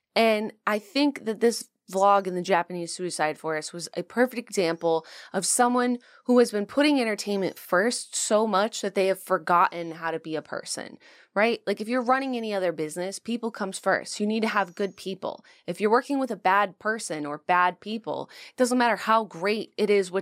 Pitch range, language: 185-240 Hz, English